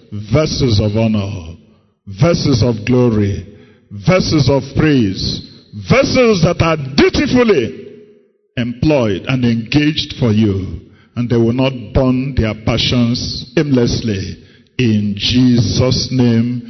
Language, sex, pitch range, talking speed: English, male, 115-145 Hz, 105 wpm